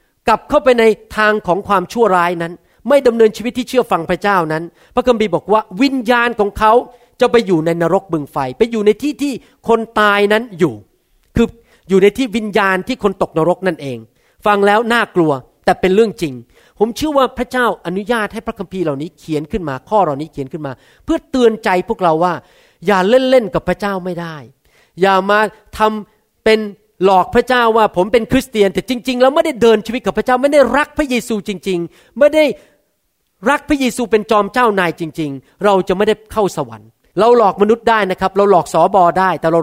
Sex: male